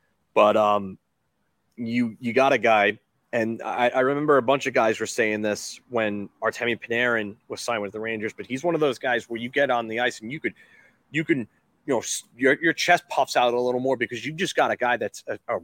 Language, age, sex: English, 30-49, male